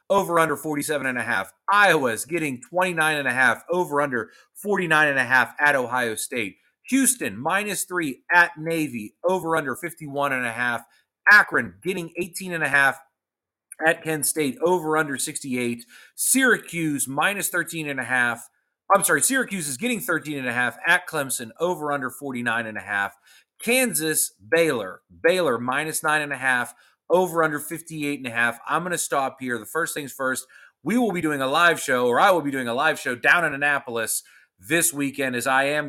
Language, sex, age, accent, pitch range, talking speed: English, male, 30-49, American, 120-160 Hz, 185 wpm